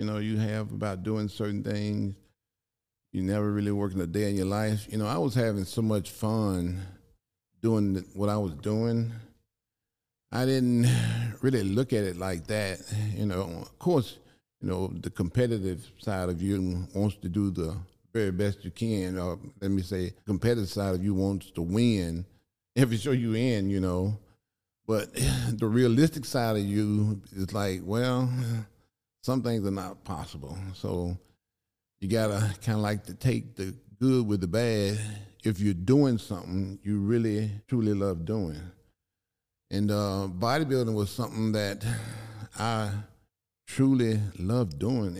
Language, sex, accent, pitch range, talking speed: English, male, American, 95-115 Hz, 160 wpm